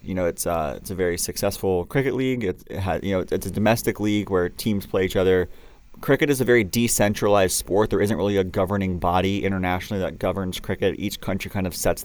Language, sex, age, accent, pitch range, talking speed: English, male, 30-49, American, 95-115 Hz, 225 wpm